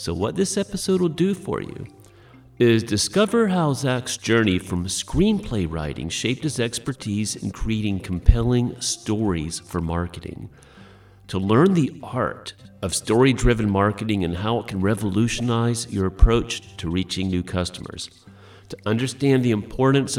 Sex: male